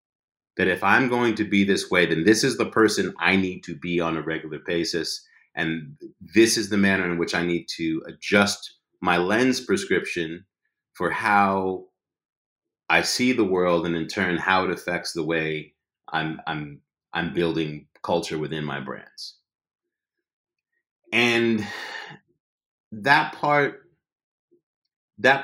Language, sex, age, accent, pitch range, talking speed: English, male, 30-49, American, 90-120 Hz, 140 wpm